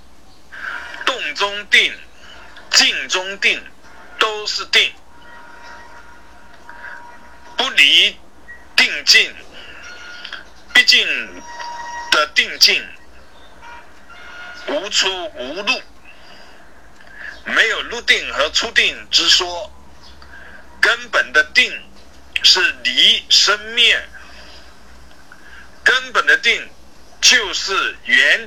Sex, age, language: male, 50-69, Chinese